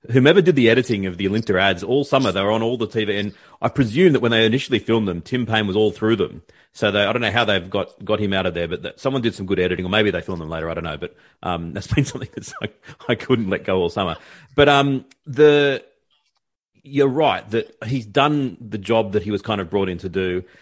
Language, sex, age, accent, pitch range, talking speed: English, male, 40-59, Australian, 100-135 Hz, 255 wpm